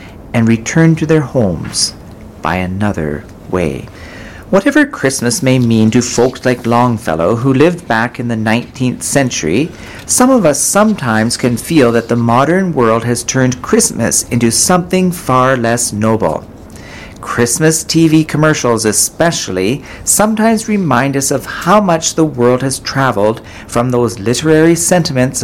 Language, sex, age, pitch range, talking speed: English, male, 50-69, 110-155 Hz, 140 wpm